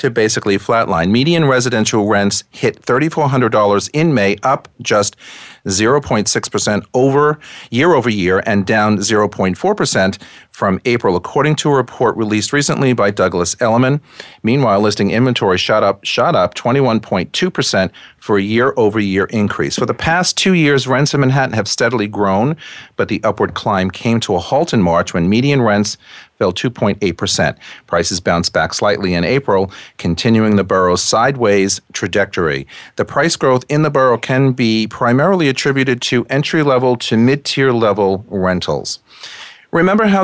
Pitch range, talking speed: 100-135 Hz, 145 wpm